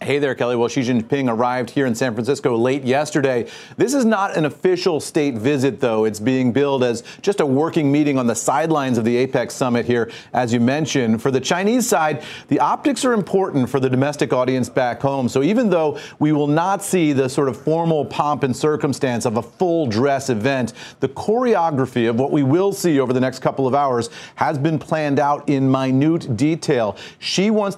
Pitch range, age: 125-155 Hz, 40-59